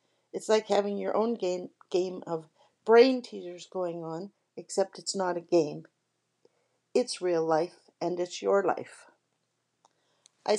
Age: 60-79